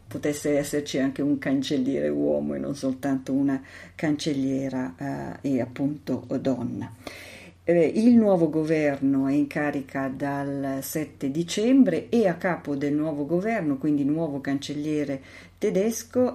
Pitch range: 140-175 Hz